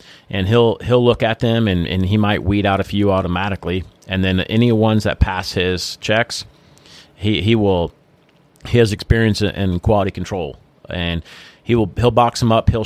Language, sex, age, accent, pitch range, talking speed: English, male, 30-49, American, 95-110 Hz, 185 wpm